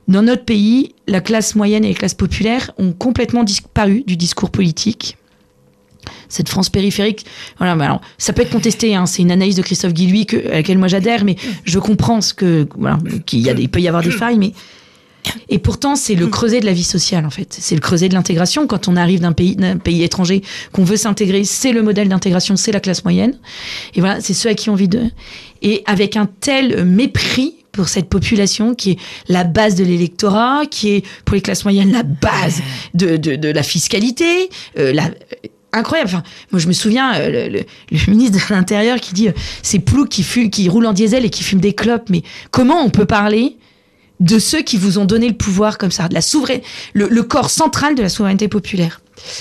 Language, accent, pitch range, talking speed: French, French, 180-225 Hz, 220 wpm